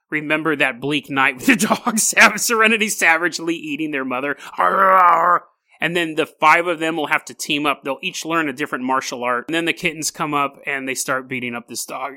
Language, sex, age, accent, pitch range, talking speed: English, male, 30-49, American, 145-215 Hz, 210 wpm